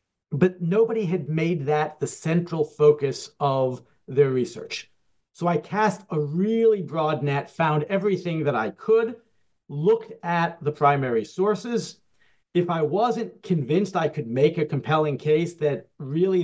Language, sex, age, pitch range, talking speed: English, male, 50-69, 140-175 Hz, 145 wpm